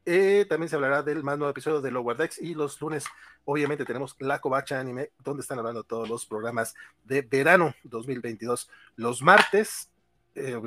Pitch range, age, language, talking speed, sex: 125-180 Hz, 40-59, Spanish, 175 wpm, male